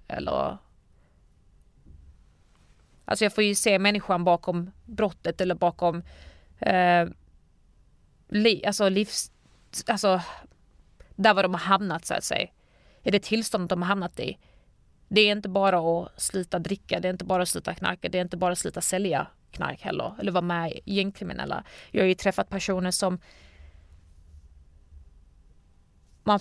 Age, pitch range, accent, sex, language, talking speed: 30-49, 175-215 Hz, native, female, Swedish, 150 wpm